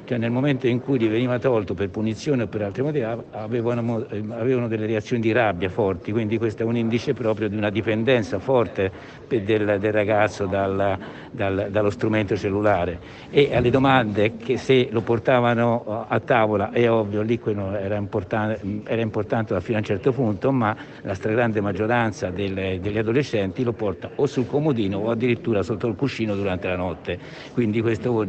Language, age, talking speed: Italian, 60-79, 180 wpm